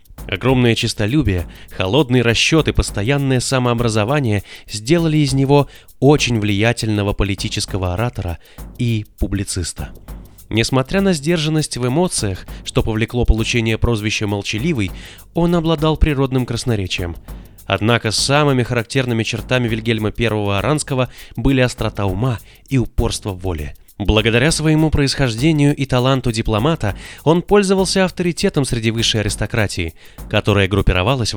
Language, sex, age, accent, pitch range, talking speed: Russian, male, 20-39, native, 100-135 Hz, 110 wpm